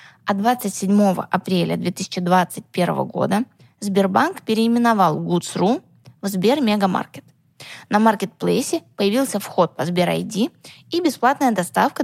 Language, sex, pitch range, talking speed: Russian, female, 185-230 Hz, 90 wpm